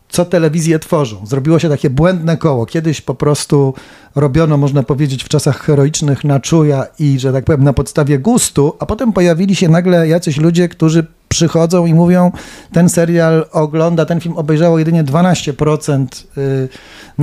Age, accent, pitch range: 40-59, native, 150-170 Hz